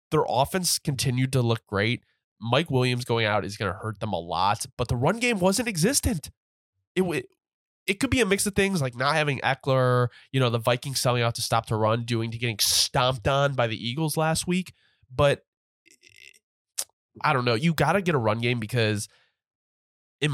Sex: male